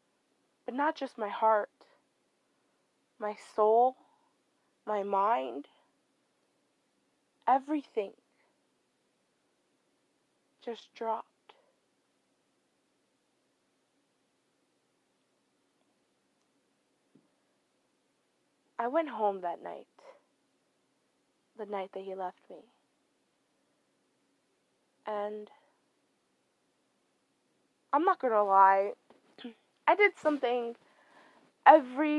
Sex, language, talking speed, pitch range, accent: female, English, 60 wpm, 220-290 Hz, American